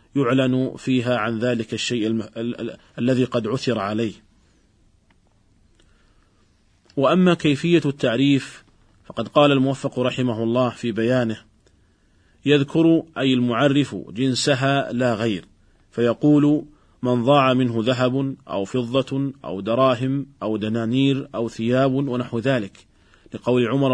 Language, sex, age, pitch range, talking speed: Arabic, male, 40-59, 115-140 Hz, 105 wpm